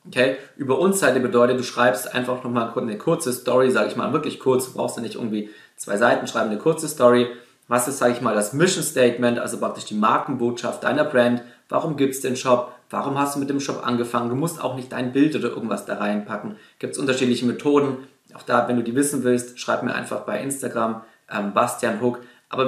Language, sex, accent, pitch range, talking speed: German, male, German, 115-135 Hz, 215 wpm